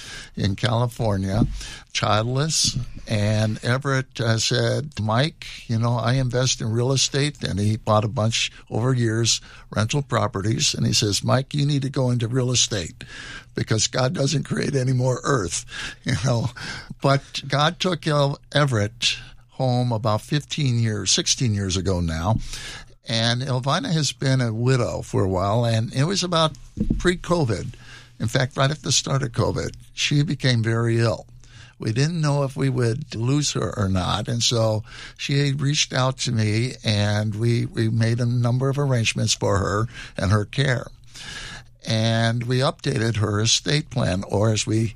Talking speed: 160 wpm